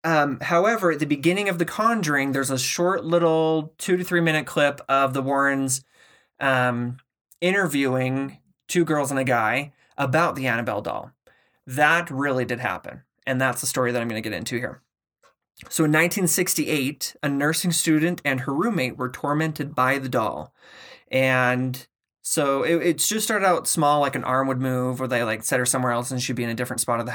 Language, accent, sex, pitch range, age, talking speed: English, American, male, 125-150 Hz, 20-39, 195 wpm